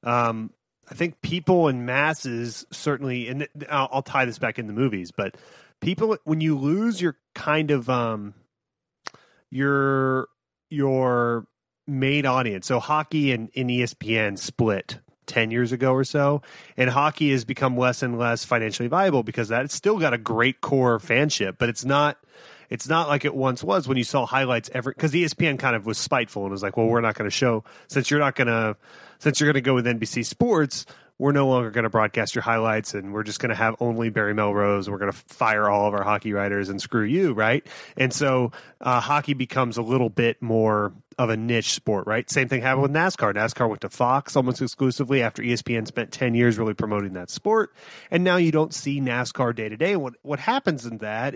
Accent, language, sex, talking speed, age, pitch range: American, English, male, 210 wpm, 30-49, 115-145 Hz